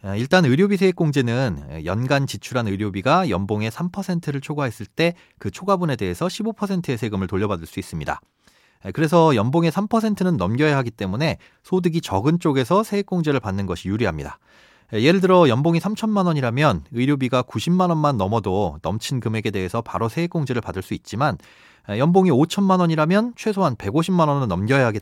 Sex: male